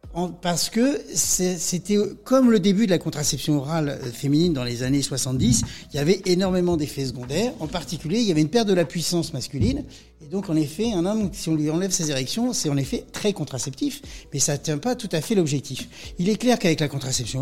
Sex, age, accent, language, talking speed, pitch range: male, 60-79, French, French, 220 wpm, 140-185 Hz